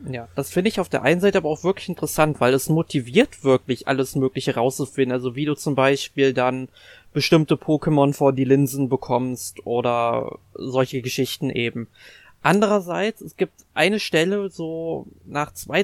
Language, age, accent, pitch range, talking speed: German, 20-39, German, 130-160 Hz, 165 wpm